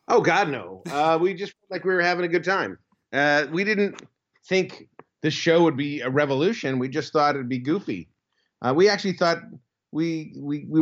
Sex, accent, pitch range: male, American, 135-170 Hz